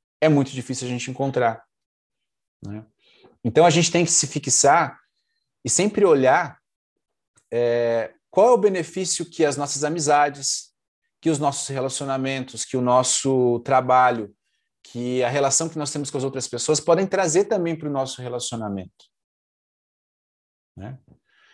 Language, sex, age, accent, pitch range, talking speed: Portuguese, male, 30-49, Brazilian, 130-175 Hz, 145 wpm